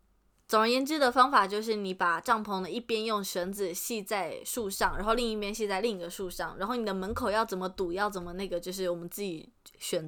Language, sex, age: Chinese, female, 20-39